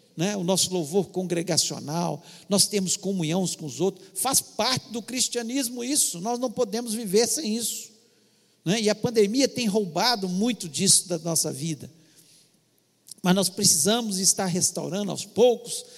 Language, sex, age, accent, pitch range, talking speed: Portuguese, male, 60-79, Brazilian, 180-235 Hz, 150 wpm